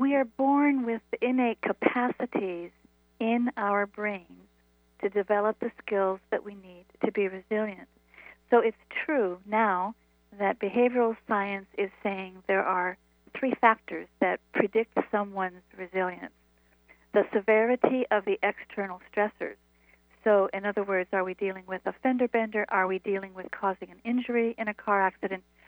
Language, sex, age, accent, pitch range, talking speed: English, female, 50-69, American, 185-220 Hz, 150 wpm